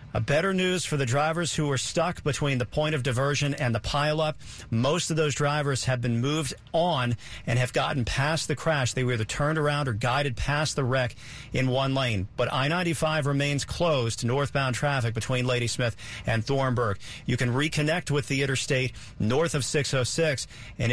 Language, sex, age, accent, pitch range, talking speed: English, male, 50-69, American, 120-145 Hz, 185 wpm